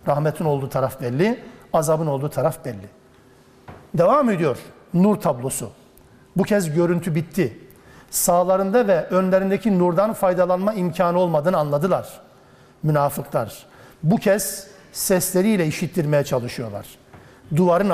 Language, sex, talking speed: Turkish, male, 105 wpm